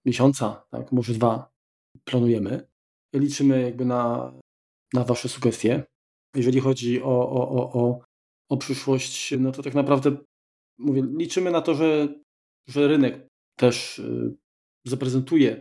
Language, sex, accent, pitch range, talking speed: Polish, male, native, 120-135 Hz, 125 wpm